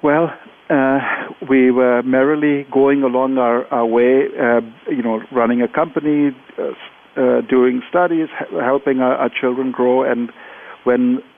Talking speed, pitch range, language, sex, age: 150 wpm, 125-150 Hz, English, male, 50-69